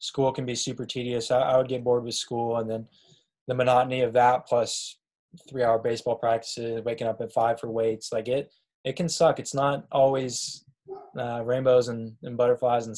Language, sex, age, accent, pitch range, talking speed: English, male, 10-29, American, 115-135 Hz, 190 wpm